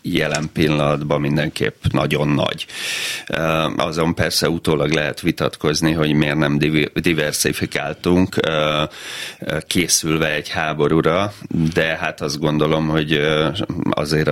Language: Hungarian